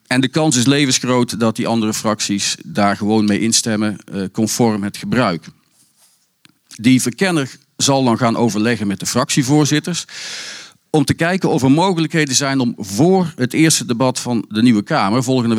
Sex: male